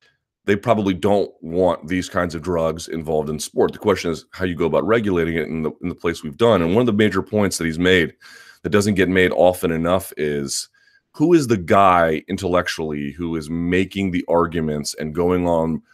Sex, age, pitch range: male, 30-49, 80-100 Hz